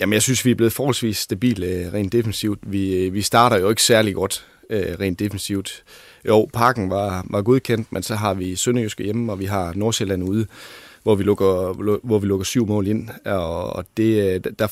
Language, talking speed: Danish, 190 wpm